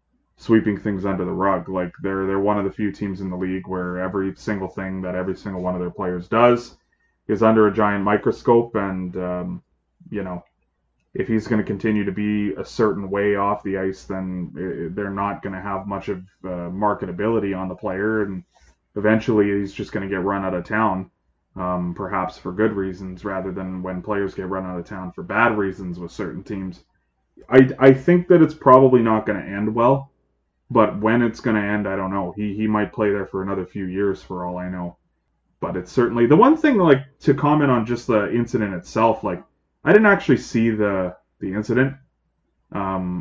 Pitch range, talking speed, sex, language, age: 95-110 Hz, 205 wpm, male, English, 20-39